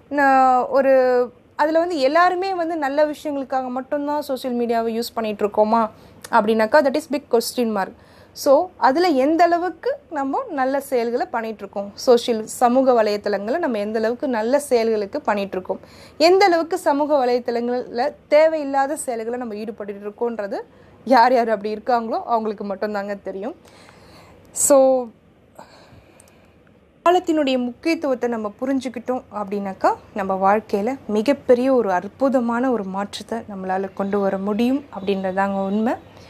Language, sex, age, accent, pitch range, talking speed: Tamil, female, 20-39, native, 210-270 Hz, 115 wpm